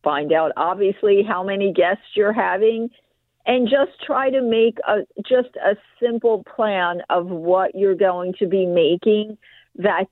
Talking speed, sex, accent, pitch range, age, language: 155 wpm, female, American, 185-235 Hz, 50-69, English